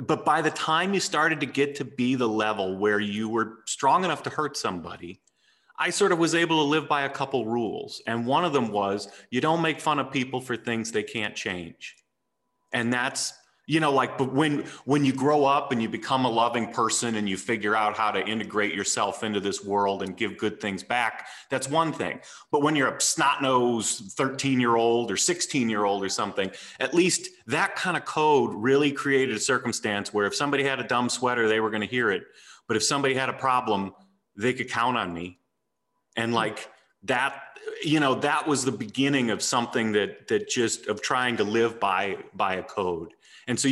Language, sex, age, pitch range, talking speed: English, male, 30-49, 110-145 Hz, 205 wpm